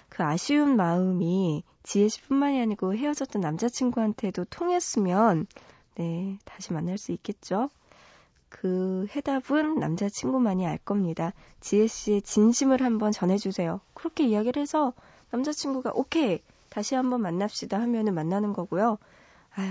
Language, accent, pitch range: Korean, native, 190-260 Hz